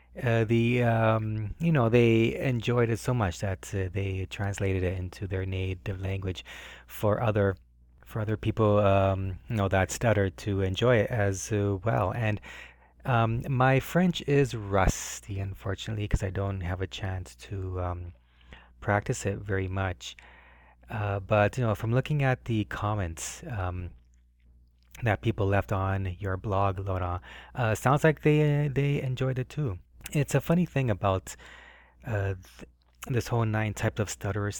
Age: 30-49